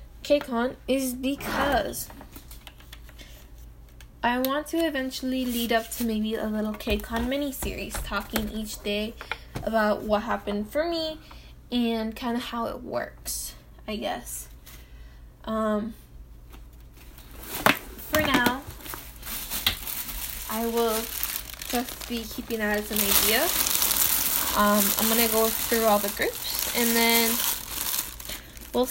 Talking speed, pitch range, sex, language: 115 wpm, 205-245 Hz, female, English